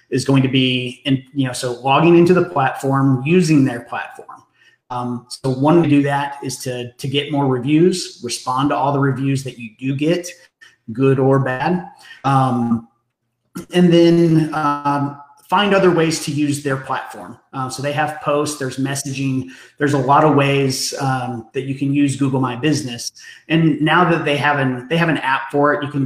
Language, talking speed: English, 195 wpm